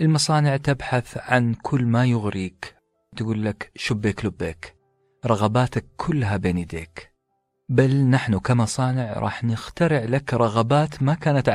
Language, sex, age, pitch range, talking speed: Arabic, male, 40-59, 100-135 Hz, 120 wpm